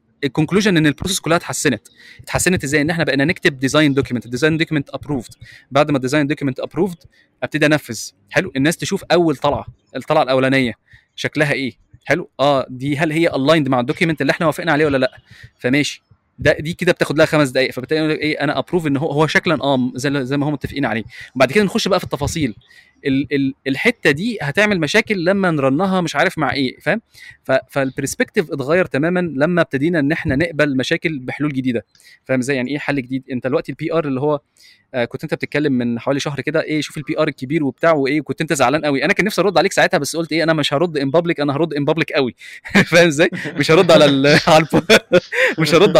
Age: 20-39